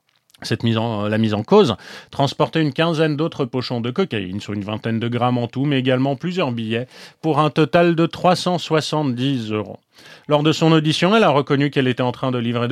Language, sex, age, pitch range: French, male, 30-49, 120-160 Hz